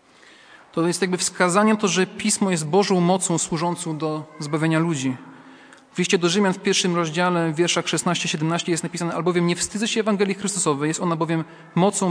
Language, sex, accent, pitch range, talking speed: Polish, male, native, 155-200 Hz, 180 wpm